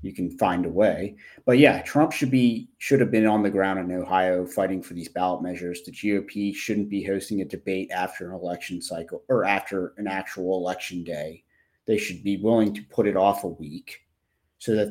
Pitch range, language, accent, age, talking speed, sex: 90-110 Hz, English, American, 30-49, 210 wpm, male